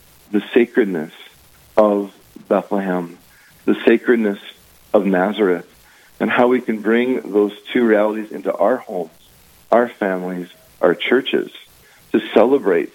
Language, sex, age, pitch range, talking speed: English, male, 40-59, 100-120 Hz, 115 wpm